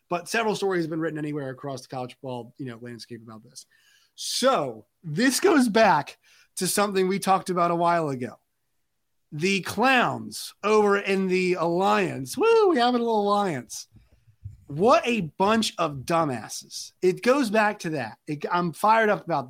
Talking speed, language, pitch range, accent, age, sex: 170 wpm, English, 155-210 Hz, American, 30-49, male